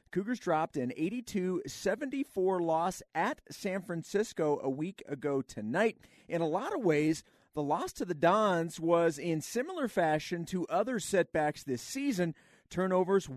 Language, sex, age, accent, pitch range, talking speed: English, male, 40-59, American, 145-185 Hz, 145 wpm